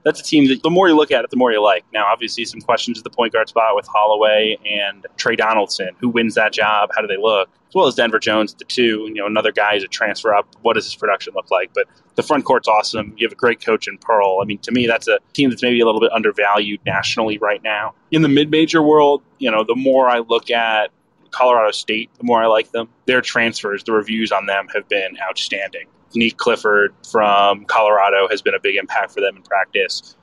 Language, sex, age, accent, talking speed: English, male, 20-39, American, 250 wpm